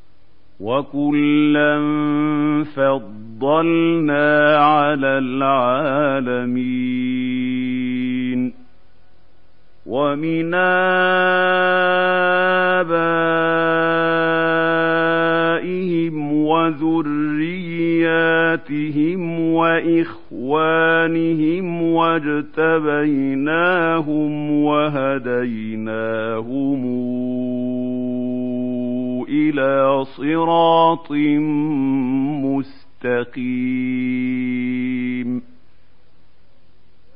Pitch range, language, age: 135-165 Hz, Arabic, 50-69